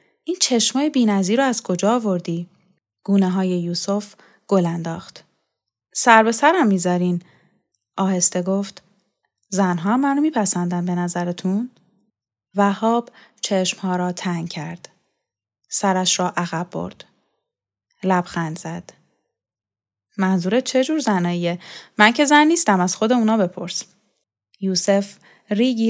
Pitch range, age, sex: 175-215 Hz, 10-29, female